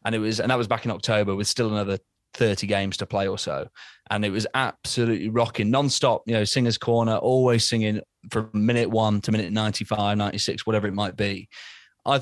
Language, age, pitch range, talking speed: English, 20-39, 110-130 Hz, 205 wpm